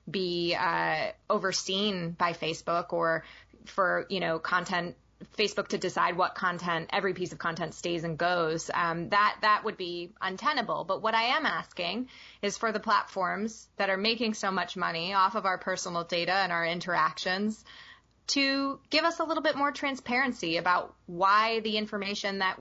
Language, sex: English, female